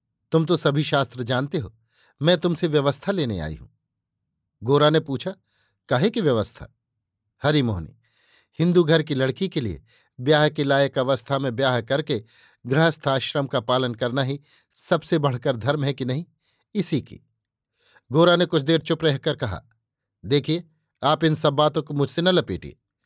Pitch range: 130-165 Hz